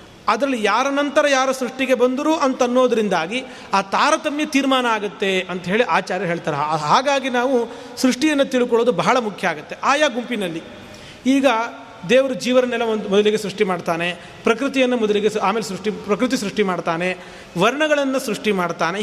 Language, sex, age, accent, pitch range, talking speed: Kannada, male, 40-59, native, 195-265 Hz, 130 wpm